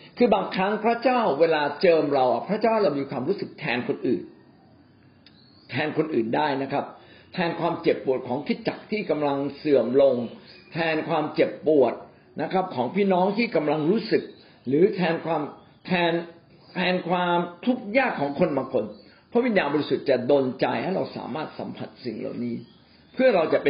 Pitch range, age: 140-190 Hz, 60-79